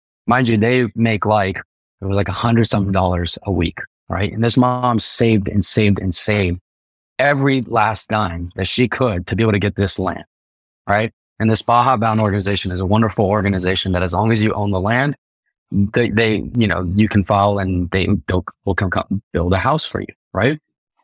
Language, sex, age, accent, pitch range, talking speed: English, male, 20-39, American, 95-115 Hz, 210 wpm